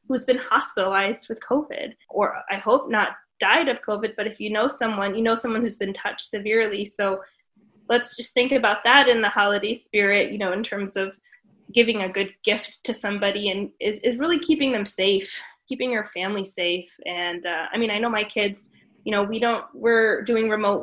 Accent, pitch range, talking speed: American, 200-235 Hz, 205 wpm